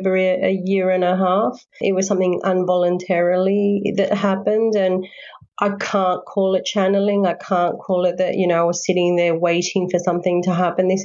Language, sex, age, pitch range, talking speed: English, female, 30-49, 180-200 Hz, 185 wpm